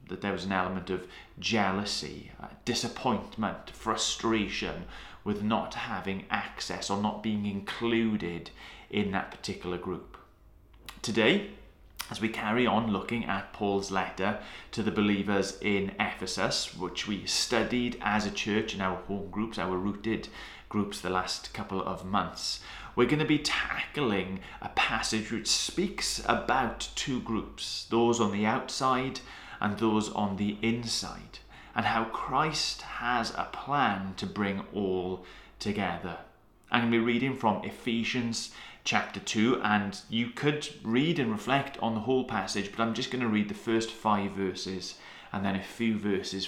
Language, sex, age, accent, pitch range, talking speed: English, male, 30-49, British, 95-115 Hz, 155 wpm